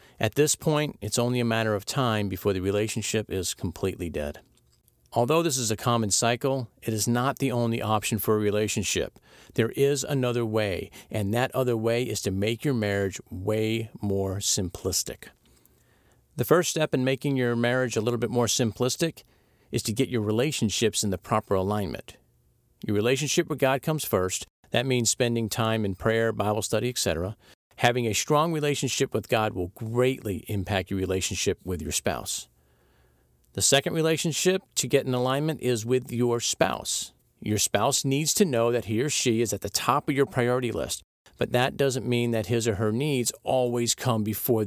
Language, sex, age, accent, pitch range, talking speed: English, male, 50-69, American, 105-130 Hz, 185 wpm